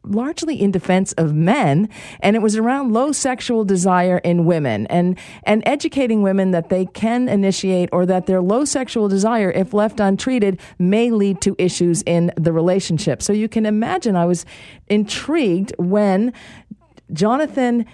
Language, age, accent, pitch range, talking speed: English, 50-69, American, 175-225 Hz, 155 wpm